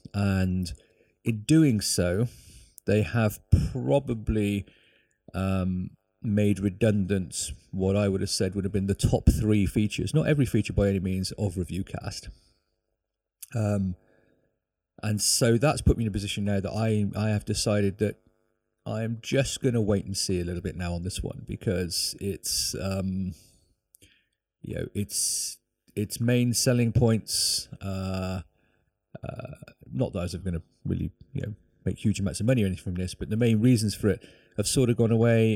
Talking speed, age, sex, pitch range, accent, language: 170 wpm, 30-49, male, 95-115 Hz, British, English